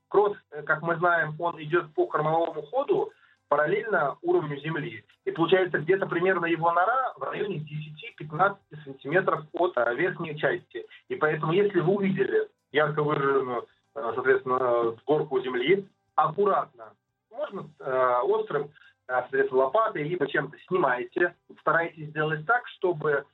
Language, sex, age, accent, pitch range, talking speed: Russian, male, 30-49, native, 150-205 Hz, 120 wpm